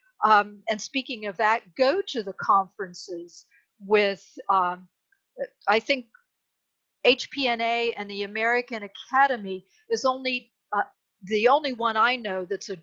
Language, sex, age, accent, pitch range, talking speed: English, female, 50-69, American, 195-235 Hz, 130 wpm